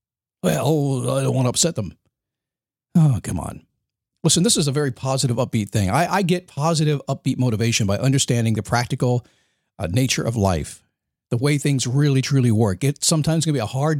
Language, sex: English, male